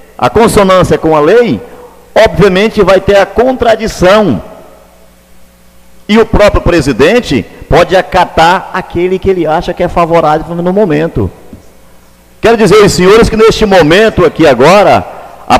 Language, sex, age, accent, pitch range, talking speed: Portuguese, male, 50-69, Brazilian, 150-205 Hz, 130 wpm